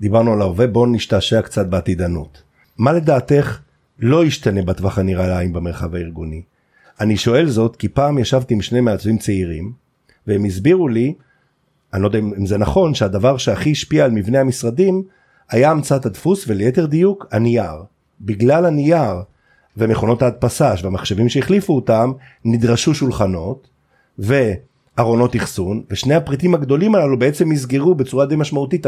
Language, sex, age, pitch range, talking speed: Hebrew, male, 50-69, 105-145 Hz, 140 wpm